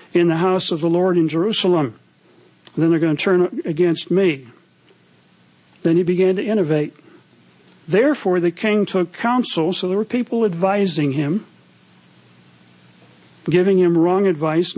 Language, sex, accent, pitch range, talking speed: English, male, American, 155-195 Hz, 140 wpm